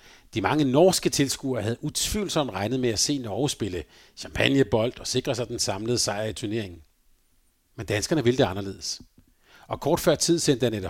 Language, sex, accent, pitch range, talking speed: Danish, male, native, 110-150 Hz, 175 wpm